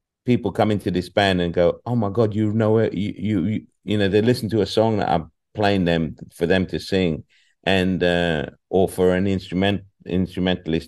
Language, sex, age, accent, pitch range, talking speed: English, male, 50-69, British, 90-110 Hz, 210 wpm